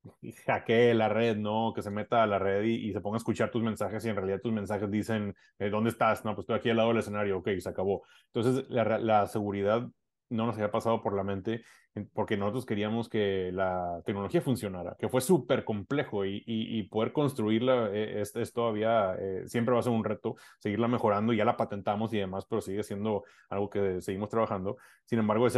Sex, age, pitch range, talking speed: male, 30-49, 100-115 Hz, 215 wpm